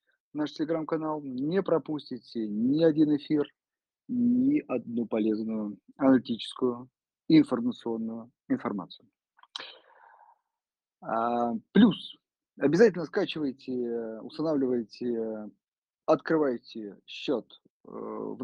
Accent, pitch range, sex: native, 125-170 Hz, male